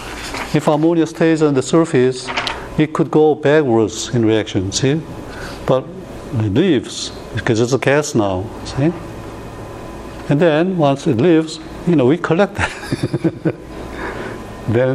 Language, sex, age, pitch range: Korean, male, 60-79, 115-155 Hz